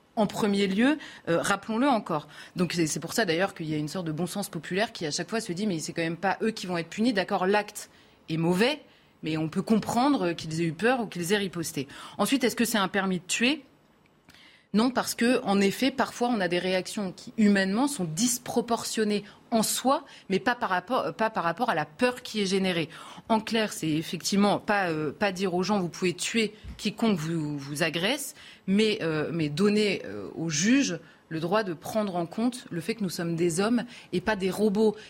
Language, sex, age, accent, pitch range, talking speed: French, female, 30-49, French, 175-225 Hz, 225 wpm